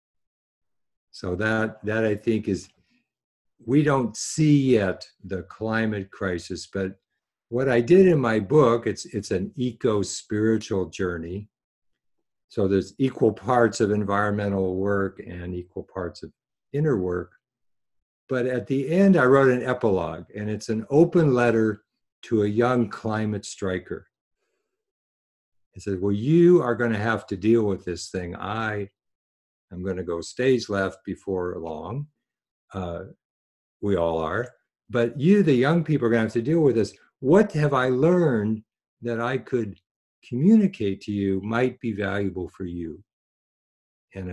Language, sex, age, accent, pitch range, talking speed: English, male, 50-69, American, 95-125 Hz, 150 wpm